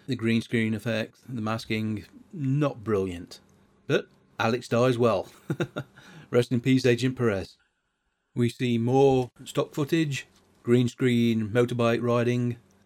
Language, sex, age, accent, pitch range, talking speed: English, male, 40-59, British, 110-130 Hz, 120 wpm